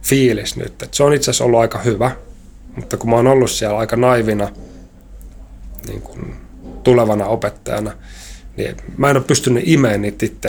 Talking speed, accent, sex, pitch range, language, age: 165 wpm, native, male, 100-125 Hz, Finnish, 30-49